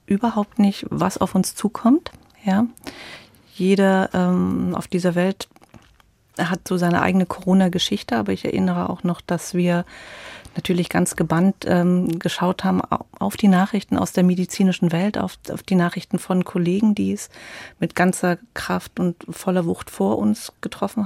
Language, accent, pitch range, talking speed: German, German, 170-190 Hz, 155 wpm